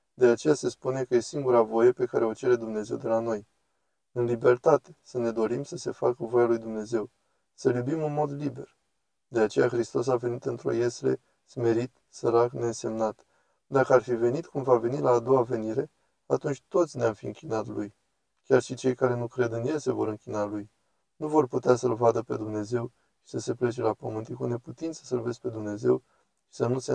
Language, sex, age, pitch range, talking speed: Romanian, male, 20-39, 110-130 Hz, 210 wpm